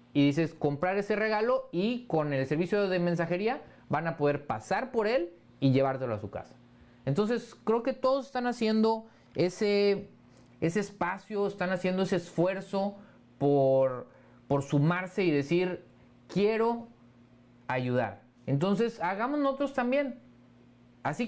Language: Spanish